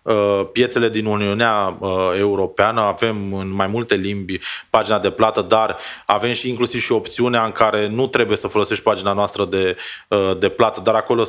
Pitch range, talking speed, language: 105-140 Hz, 165 wpm, Romanian